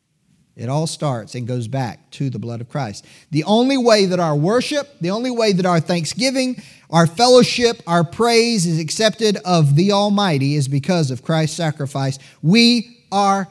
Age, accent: 40-59, American